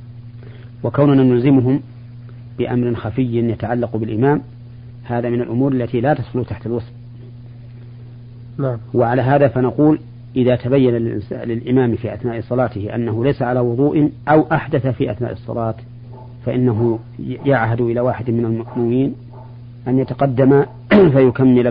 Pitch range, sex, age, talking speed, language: 120-125 Hz, male, 40-59, 115 wpm, Arabic